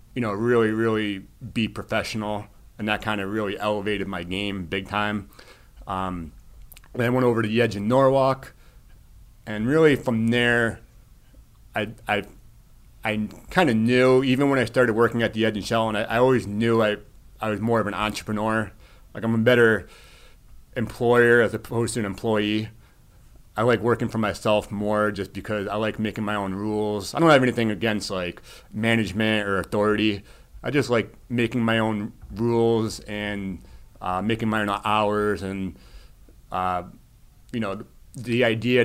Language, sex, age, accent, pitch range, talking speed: English, male, 30-49, American, 100-115 Hz, 170 wpm